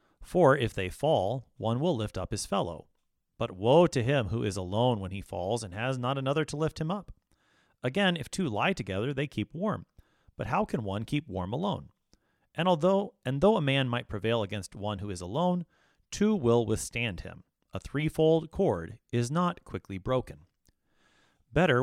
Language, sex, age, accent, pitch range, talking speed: English, male, 30-49, American, 95-145 Hz, 185 wpm